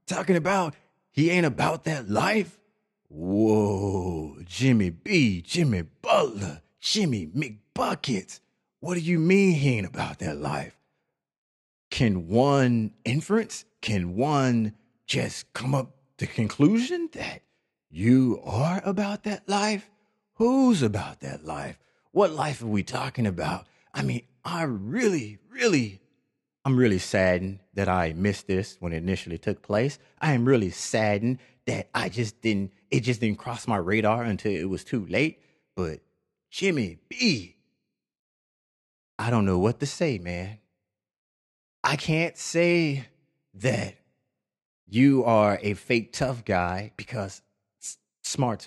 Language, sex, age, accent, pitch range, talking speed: English, male, 30-49, American, 95-150 Hz, 135 wpm